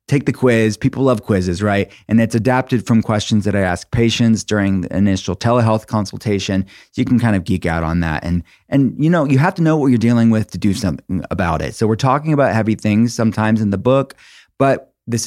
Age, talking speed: 30-49, 230 wpm